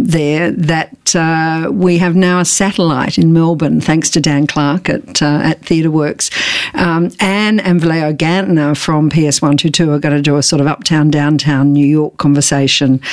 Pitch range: 145-170 Hz